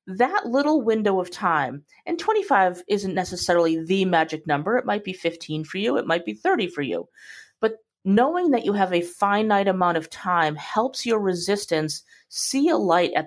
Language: English